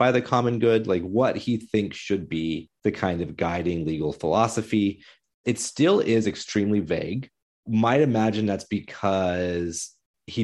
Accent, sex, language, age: American, male, English, 30-49